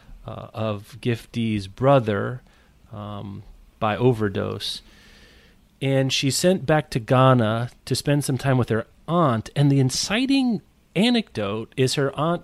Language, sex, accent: English, male, American